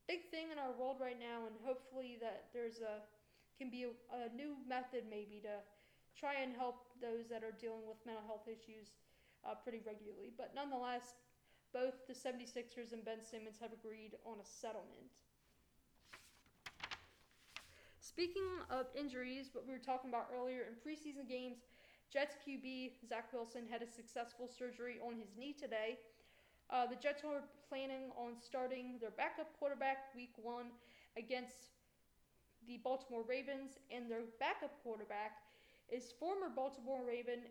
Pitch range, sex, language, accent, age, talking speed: 230-260 Hz, female, English, American, 20-39, 150 wpm